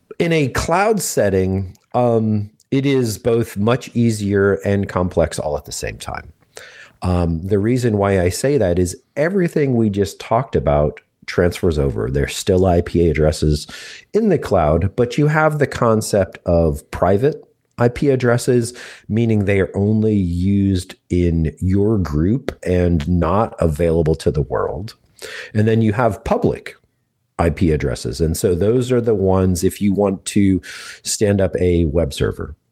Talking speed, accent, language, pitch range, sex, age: 155 wpm, American, English, 85-115 Hz, male, 40-59